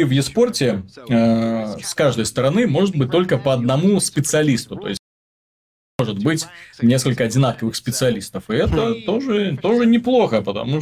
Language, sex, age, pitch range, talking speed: Russian, male, 20-39, 115-145 Hz, 140 wpm